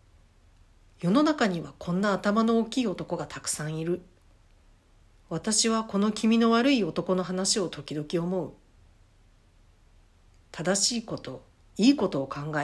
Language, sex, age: Japanese, female, 50-69